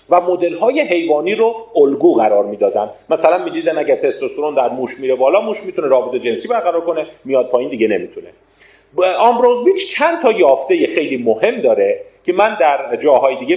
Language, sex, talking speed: Persian, male, 175 wpm